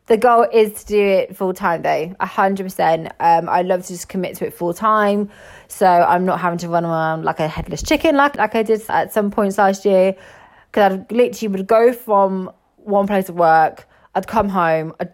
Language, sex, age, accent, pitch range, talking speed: English, female, 20-39, British, 180-220 Hz, 220 wpm